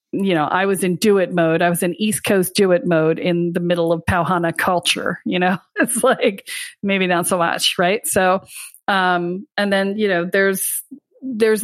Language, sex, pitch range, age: English, female, 175-200 Hz, 40-59